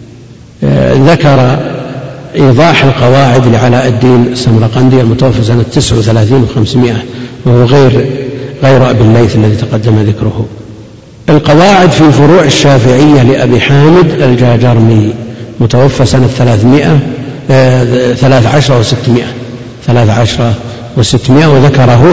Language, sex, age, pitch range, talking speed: Arabic, male, 50-69, 120-140 Hz, 90 wpm